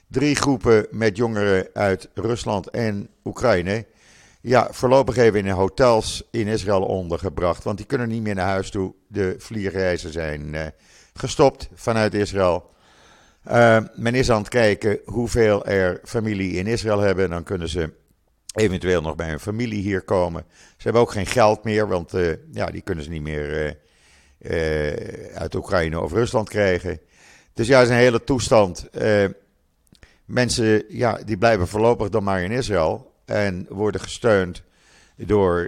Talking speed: 160 wpm